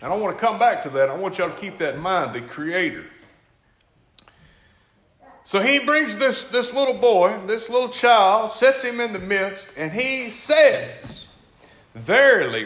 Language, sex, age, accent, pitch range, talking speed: English, male, 50-69, American, 180-270 Hz, 180 wpm